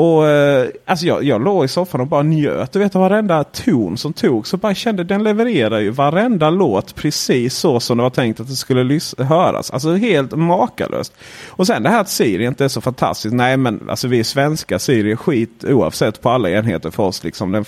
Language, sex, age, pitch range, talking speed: Swedish, male, 30-49, 105-140 Hz, 220 wpm